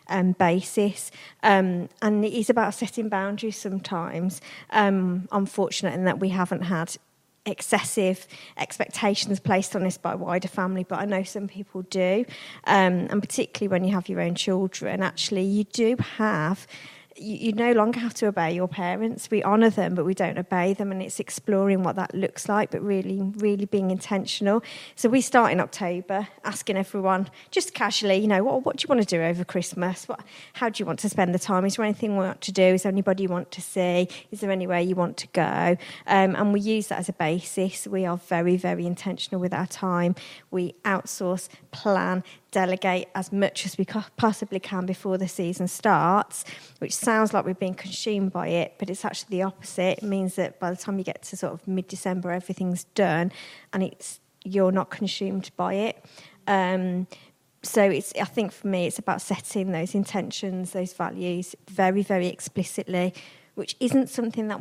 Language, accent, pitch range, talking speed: English, British, 180-205 Hz, 190 wpm